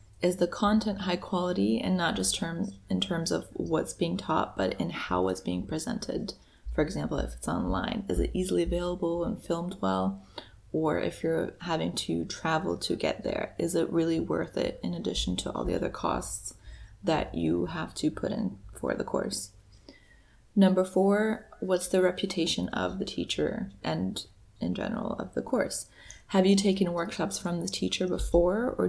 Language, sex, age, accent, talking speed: English, female, 20-39, American, 180 wpm